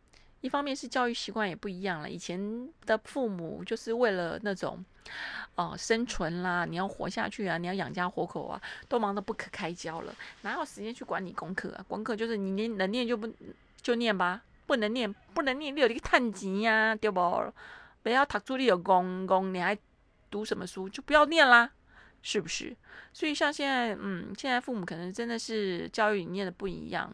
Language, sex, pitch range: Chinese, female, 190-240 Hz